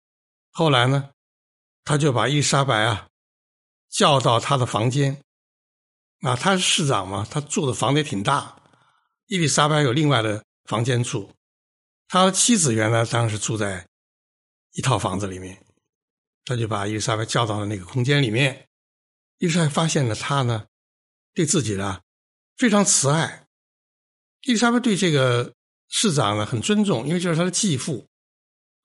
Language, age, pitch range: Chinese, 60-79, 105-170 Hz